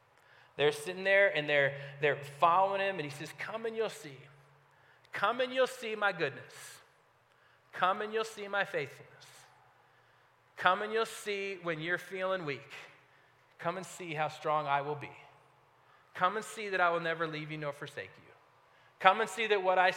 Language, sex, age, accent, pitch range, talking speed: English, male, 40-59, American, 165-230 Hz, 185 wpm